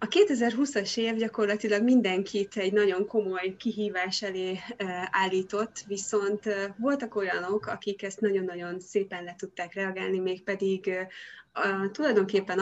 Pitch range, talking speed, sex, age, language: 185-210 Hz, 110 wpm, female, 20-39, Hungarian